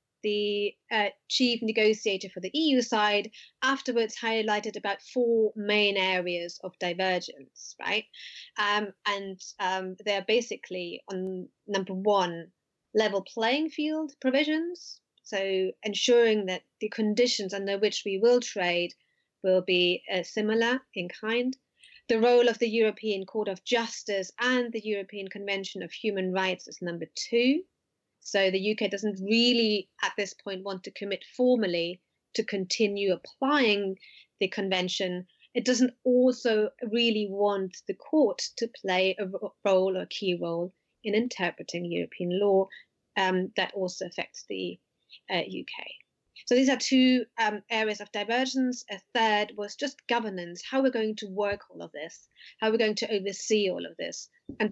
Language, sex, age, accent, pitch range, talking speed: English, female, 30-49, British, 190-235 Hz, 150 wpm